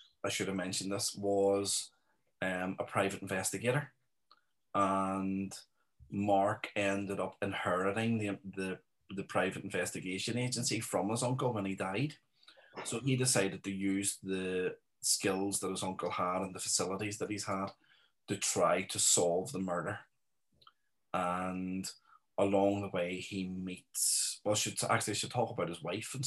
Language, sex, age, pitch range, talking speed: English, male, 30-49, 95-110 Hz, 145 wpm